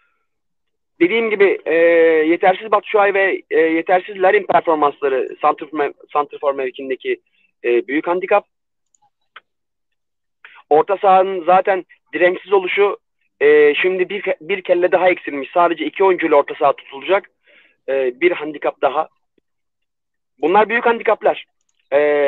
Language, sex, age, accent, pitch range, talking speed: Turkish, male, 40-59, native, 160-205 Hz, 130 wpm